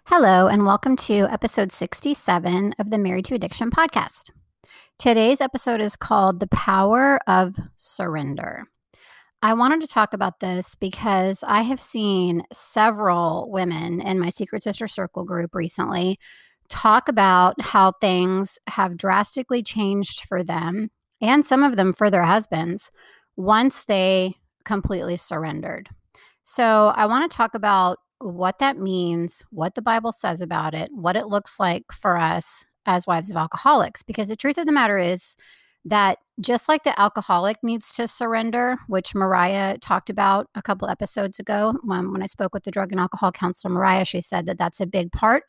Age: 30-49